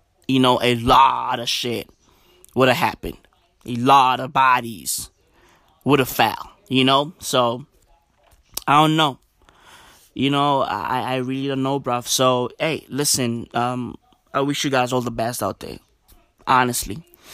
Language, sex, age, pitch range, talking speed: English, male, 20-39, 115-130 Hz, 150 wpm